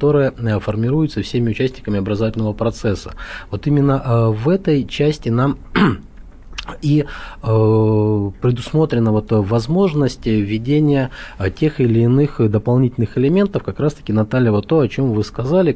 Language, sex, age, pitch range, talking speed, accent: Russian, male, 20-39, 110-135 Hz, 130 wpm, native